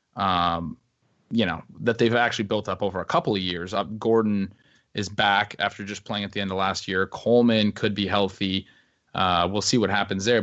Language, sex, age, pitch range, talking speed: English, male, 20-39, 95-115 Hz, 205 wpm